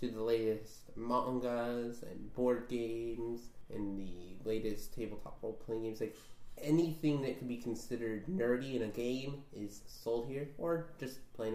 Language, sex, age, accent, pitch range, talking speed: English, male, 20-39, American, 110-120 Hz, 150 wpm